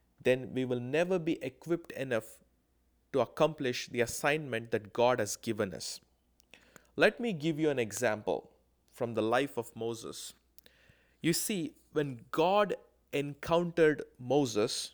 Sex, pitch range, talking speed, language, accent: male, 120-160 Hz, 135 wpm, English, Indian